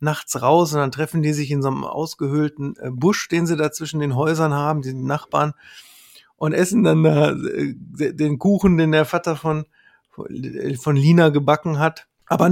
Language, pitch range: German, 150-190 Hz